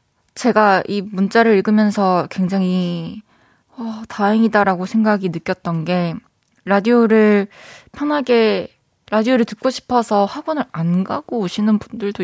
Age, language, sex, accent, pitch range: 20-39, Korean, female, native, 180-225 Hz